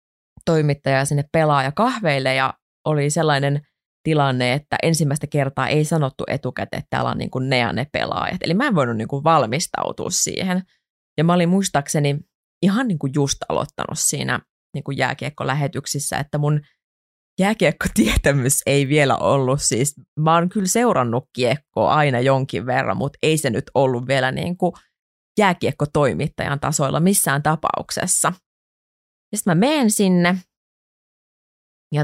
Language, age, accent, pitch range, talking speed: Finnish, 30-49, native, 135-170 Hz, 140 wpm